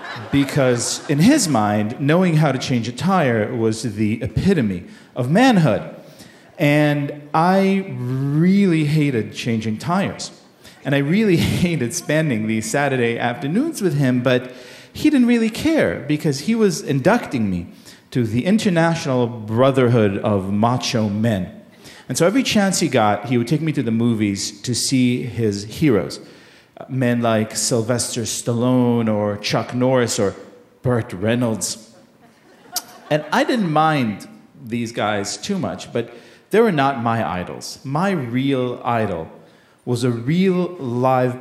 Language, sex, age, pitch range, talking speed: English, male, 40-59, 115-150 Hz, 140 wpm